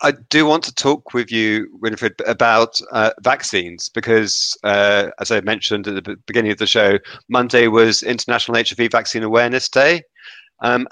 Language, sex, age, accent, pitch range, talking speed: English, male, 30-49, British, 105-135 Hz, 165 wpm